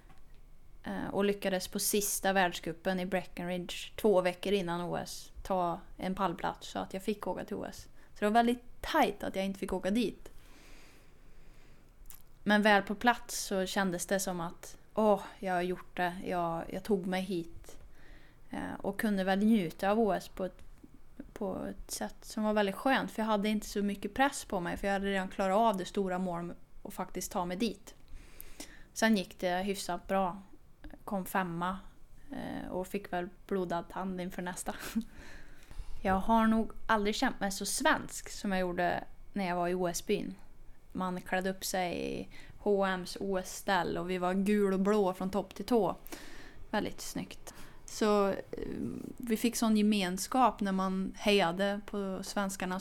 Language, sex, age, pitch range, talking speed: English, female, 30-49, 185-210 Hz, 170 wpm